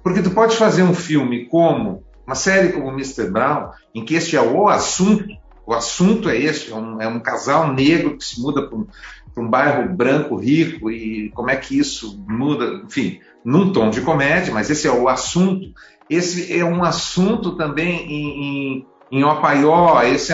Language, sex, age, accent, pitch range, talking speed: English, male, 50-69, Brazilian, 150-200 Hz, 185 wpm